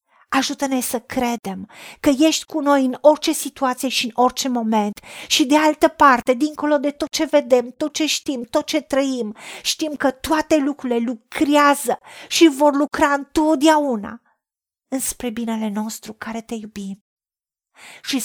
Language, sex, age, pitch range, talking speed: Romanian, female, 40-59, 225-285 Hz, 150 wpm